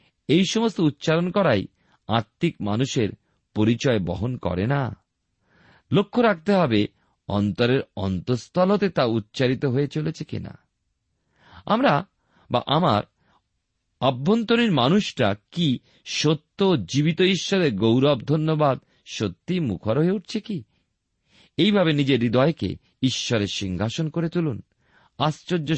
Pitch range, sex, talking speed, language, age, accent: 105-160 Hz, male, 100 wpm, Bengali, 50-69, native